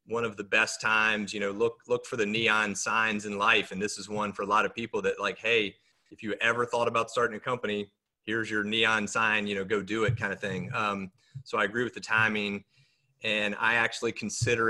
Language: English